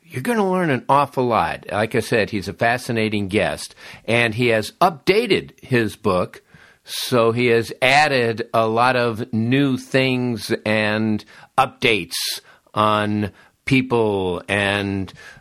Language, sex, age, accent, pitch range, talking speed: English, male, 50-69, American, 105-130 Hz, 130 wpm